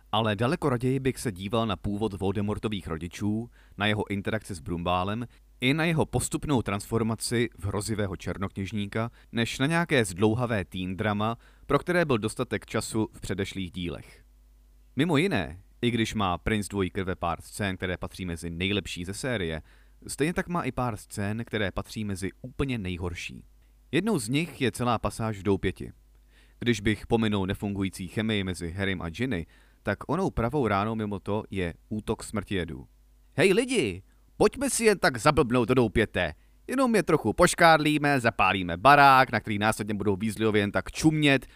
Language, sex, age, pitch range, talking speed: Czech, male, 30-49, 95-125 Hz, 165 wpm